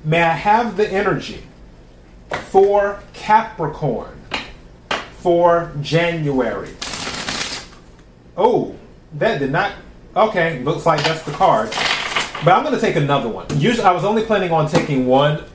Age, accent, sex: 30-49, American, male